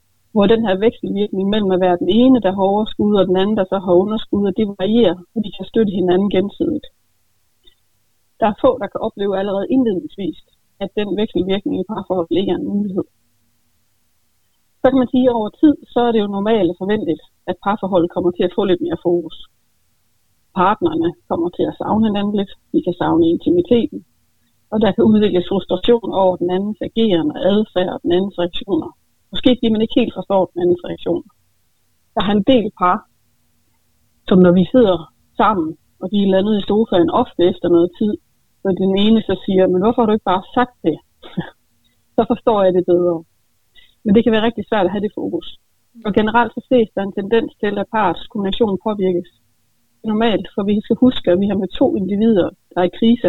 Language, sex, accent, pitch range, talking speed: Danish, female, native, 175-225 Hz, 200 wpm